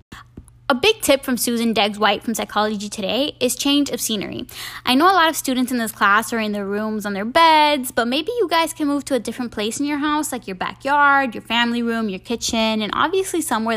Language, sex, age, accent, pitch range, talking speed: English, female, 10-29, American, 220-280 Hz, 230 wpm